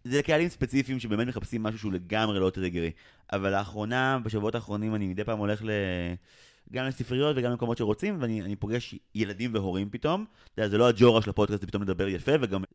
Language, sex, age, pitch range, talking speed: Hebrew, male, 30-49, 100-130 Hz, 195 wpm